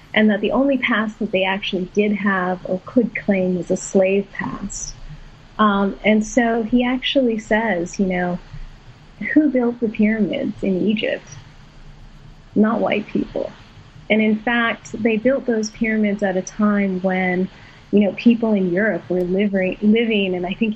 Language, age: English, 30-49